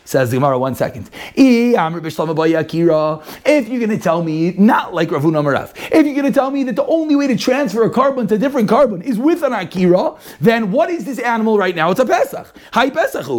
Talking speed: 210 wpm